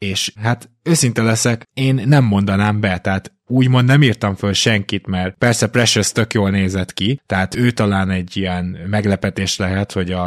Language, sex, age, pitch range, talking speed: Hungarian, male, 20-39, 95-115 Hz, 170 wpm